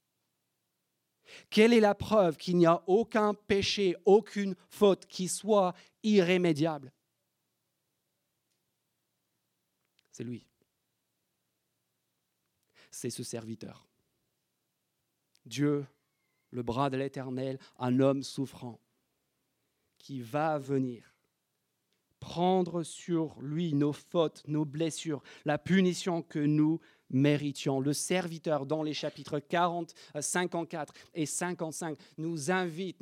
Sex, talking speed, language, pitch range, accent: male, 95 wpm, French, 135-180 Hz, French